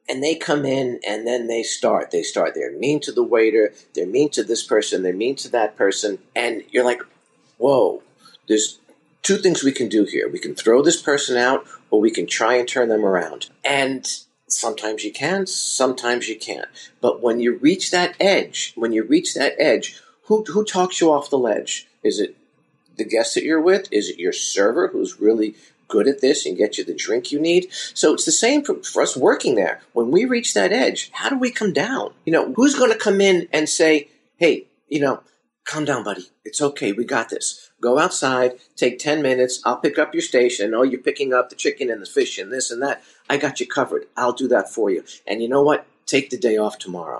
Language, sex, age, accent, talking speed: English, male, 50-69, American, 225 wpm